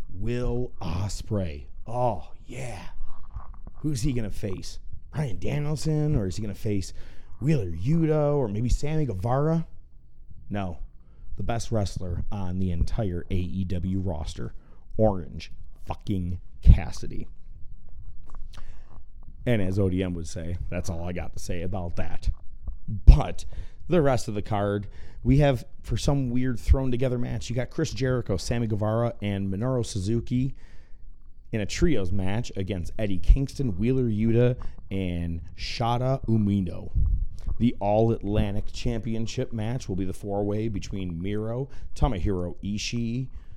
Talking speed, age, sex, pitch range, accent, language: 130 wpm, 30-49, male, 90-115 Hz, American, English